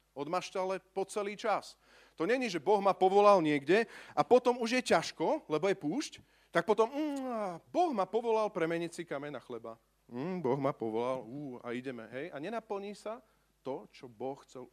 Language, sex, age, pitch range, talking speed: Slovak, male, 40-59, 145-205 Hz, 185 wpm